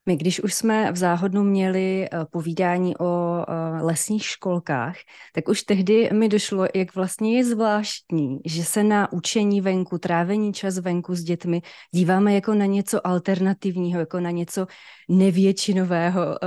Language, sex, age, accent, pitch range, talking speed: Czech, female, 20-39, native, 170-195 Hz, 140 wpm